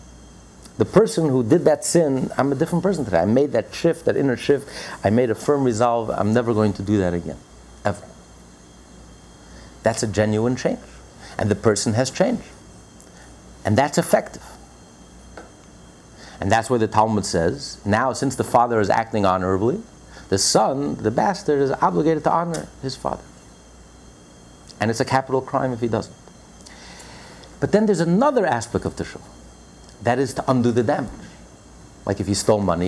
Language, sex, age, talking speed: English, male, 50-69, 170 wpm